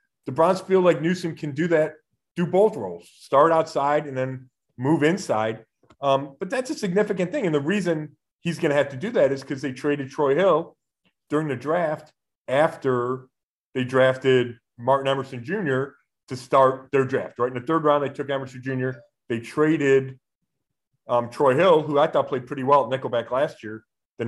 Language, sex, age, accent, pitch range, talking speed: English, male, 40-59, American, 130-155 Hz, 190 wpm